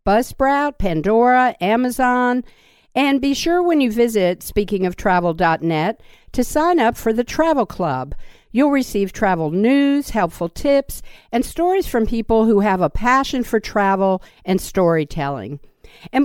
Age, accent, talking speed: 50-69, American, 135 wpm